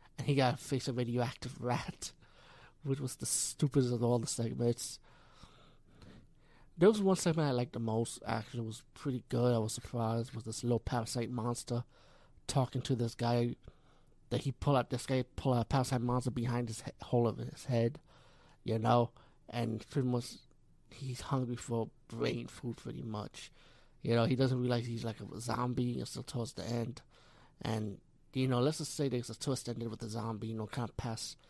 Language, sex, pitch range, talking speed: English, male, 115-140 Hz, 200 wpm